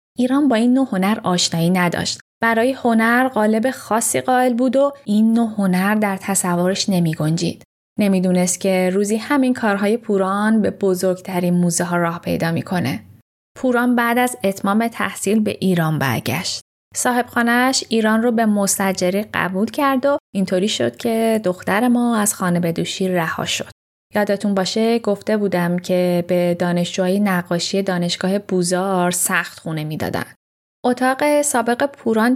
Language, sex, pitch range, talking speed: Persian, female, 185-245 Hz, 140 wpm